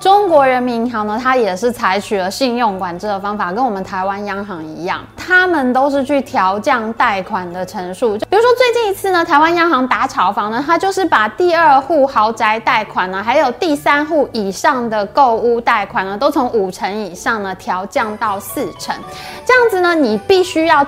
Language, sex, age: Chinese, female, 20-39